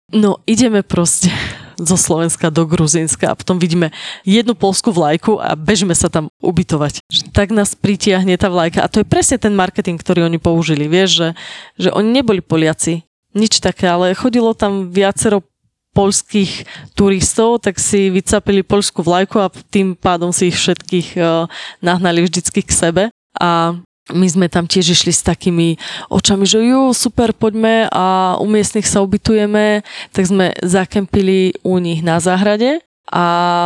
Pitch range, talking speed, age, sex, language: 170-200 Hz, 155 wpm, 20-39, female, Slovak